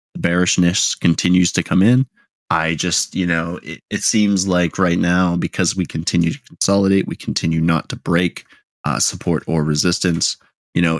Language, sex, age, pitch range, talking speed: English, male, 20-39, 80-90 Hz, 175 wpm